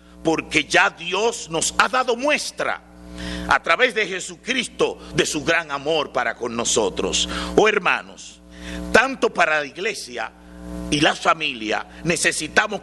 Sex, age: male, 50-69